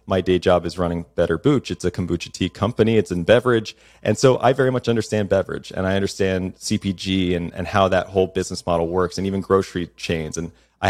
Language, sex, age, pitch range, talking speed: English, male, 30-49, 85-100 Hz, 220 wpm